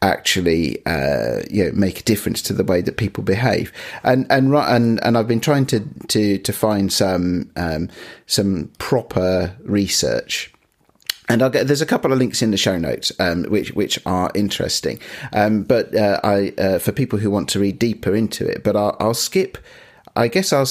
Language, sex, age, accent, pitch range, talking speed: English, male, 40-59, British, 95-120 Hz, 200 wpm